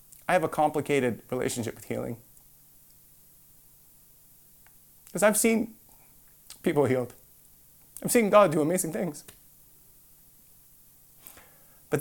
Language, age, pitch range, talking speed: English, 30-49, 145-190 Hz, 95 wpm